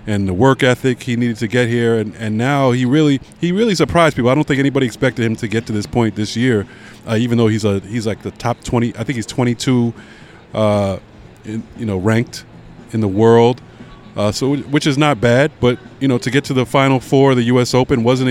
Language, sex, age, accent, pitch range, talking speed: English, male, 20-39, American, 110-140 Hz, 240 wpm